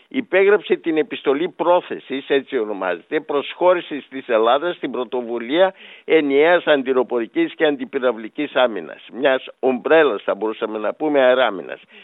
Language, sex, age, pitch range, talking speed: Greek, male, 60-79, 135-185 Hz, 115 wpm